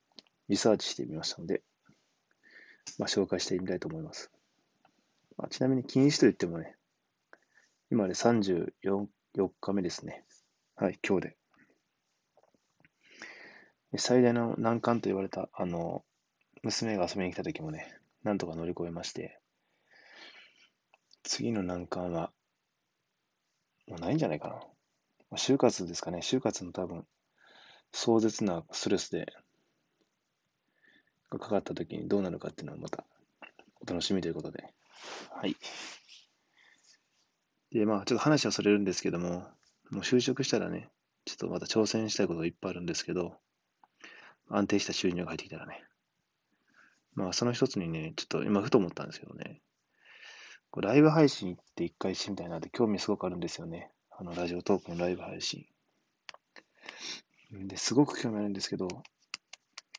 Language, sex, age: Japanese, male, 20-39